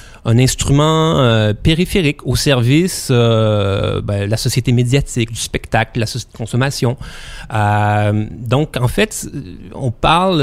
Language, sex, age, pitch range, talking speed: French, male, 30-49, 115-155 Hz, 145 wpm